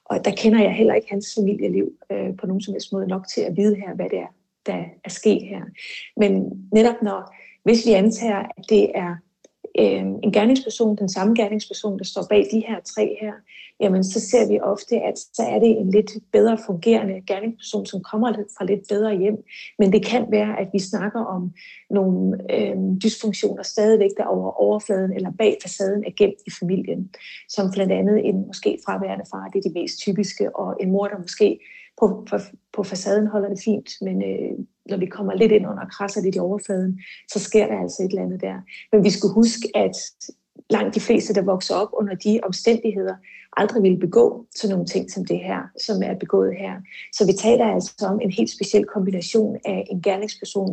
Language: Danish